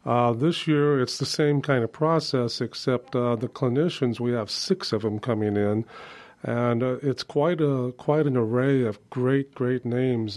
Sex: male